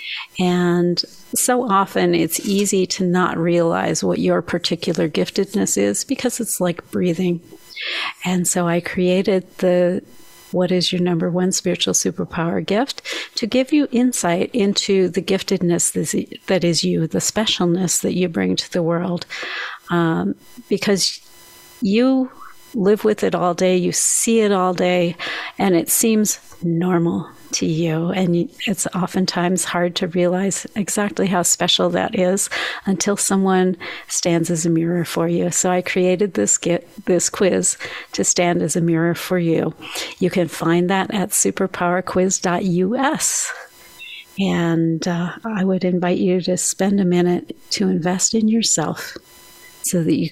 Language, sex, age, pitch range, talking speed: English, female, 50-69, 175-195 Hz, 145 wpm